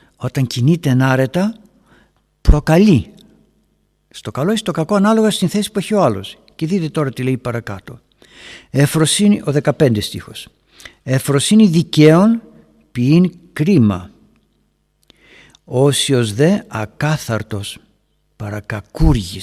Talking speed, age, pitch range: 105 wpm, 60-79, 110-185 Hz